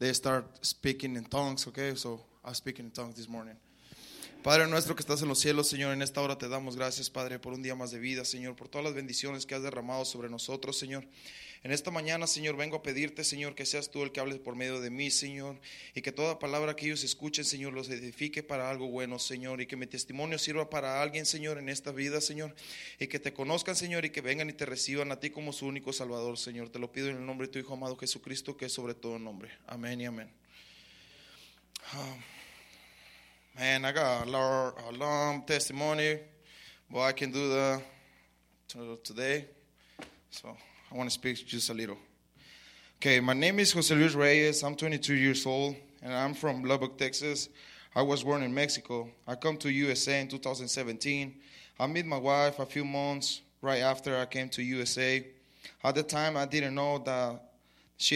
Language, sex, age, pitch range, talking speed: English, male, 20-39, 130-145 Hz, 205 wpm